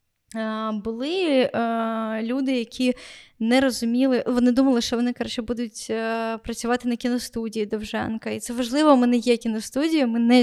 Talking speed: 140 wpm